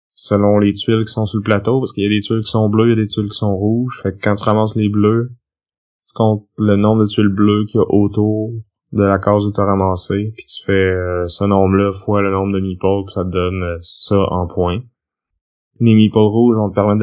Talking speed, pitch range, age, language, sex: 260 wpm, 95-110 Hz, 20-39, French, male